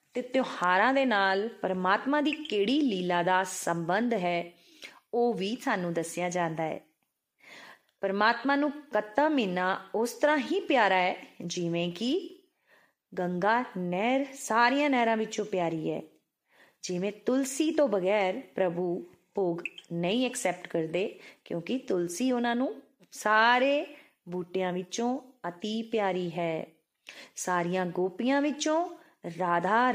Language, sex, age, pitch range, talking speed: Punjabi, female, 30-49, 180-255 Hz, 95 wpm